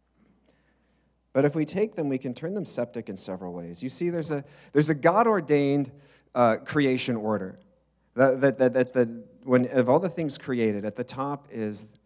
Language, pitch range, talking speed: English, 100-130 Hz, 190 wpm